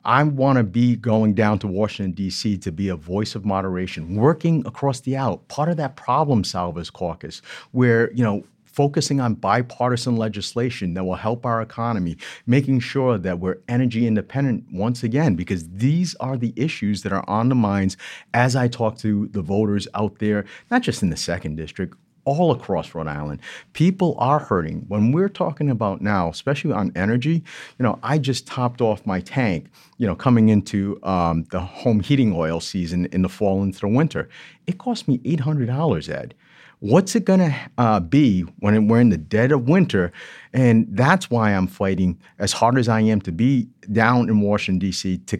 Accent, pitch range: American, 95-135 Hz